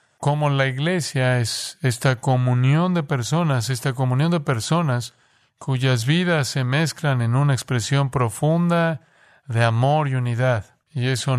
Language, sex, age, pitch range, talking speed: Spanish, male, 40-59, 120-140 Hz, 135 wpm